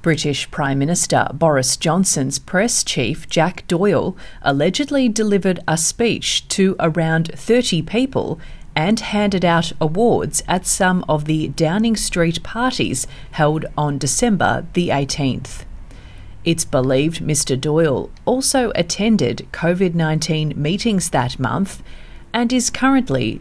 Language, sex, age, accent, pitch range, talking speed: English, female, 40-59, Australian, 145-195 Hz, 120 wpm